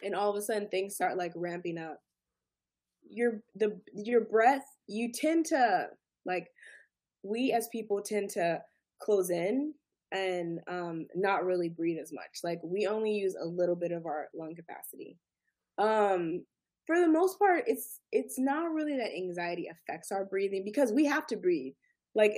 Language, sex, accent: English, female, American